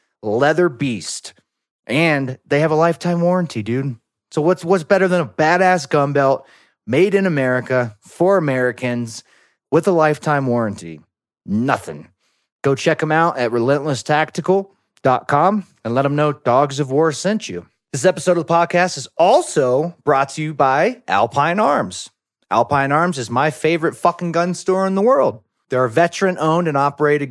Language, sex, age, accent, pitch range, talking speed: English, male, 30-49, American, 130-185 Hz, 160 wpm